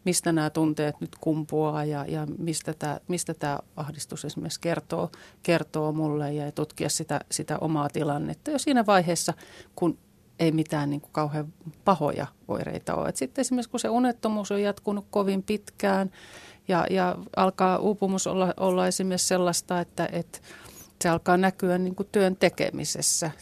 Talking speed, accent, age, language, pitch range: 140 wpm, native, 40-59, Finnish, 150-185 Hz